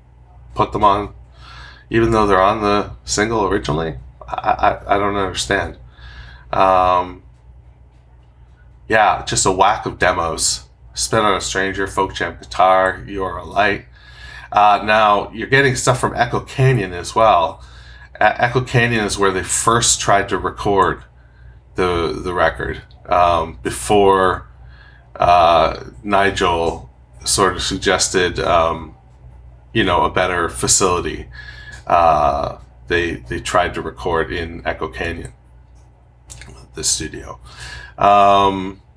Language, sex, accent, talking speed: English, male, American, 120 wpm